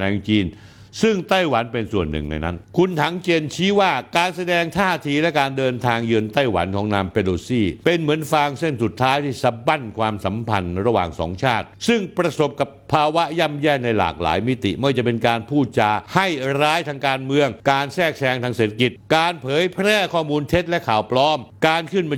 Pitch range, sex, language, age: 95-140 Hz, male, Thai, 60-79